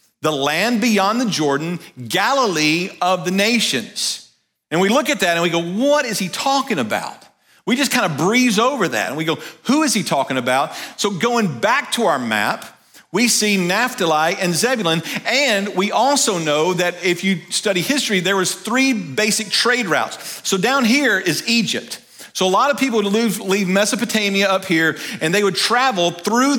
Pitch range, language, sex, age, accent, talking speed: 170-235 Hz, English, male, 40-59, American, 185 wpm